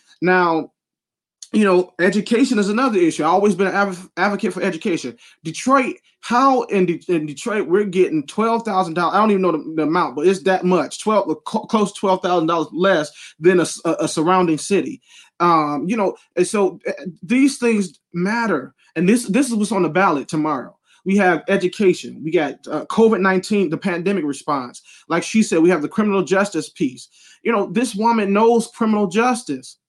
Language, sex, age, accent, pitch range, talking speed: English, male, 20-39, American, 180-230 Hz, 185 wpm